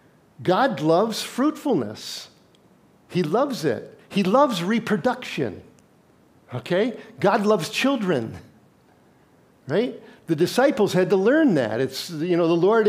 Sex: male